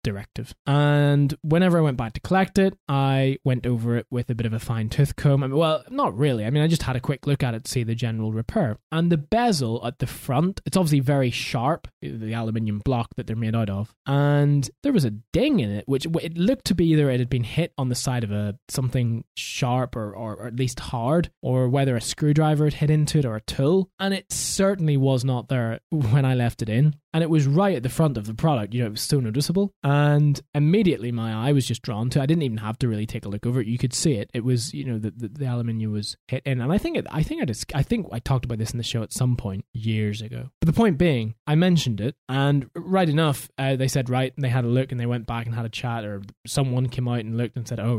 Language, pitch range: English, 115-150 Hz